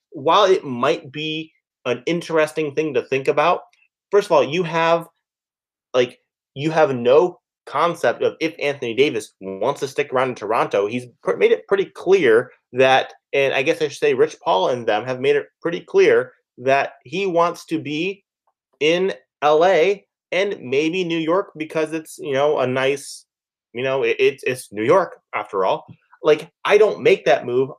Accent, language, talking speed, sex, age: American, English, 175 wpm, male, 30-49